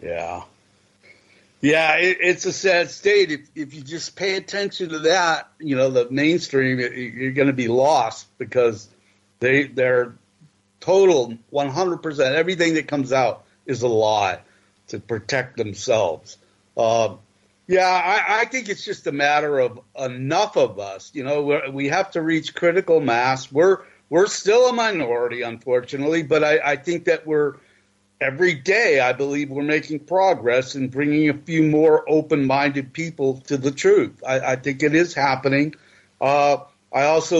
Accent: American